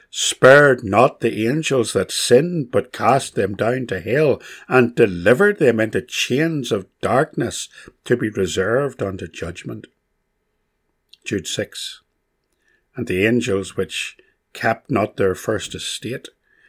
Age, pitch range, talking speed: 60-79, 95-120 Hz, 125 wpm